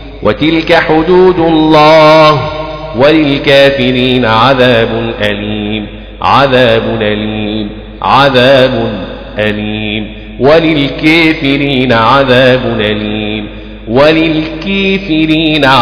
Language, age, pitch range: Arabic, 40-59, 140-160 Hz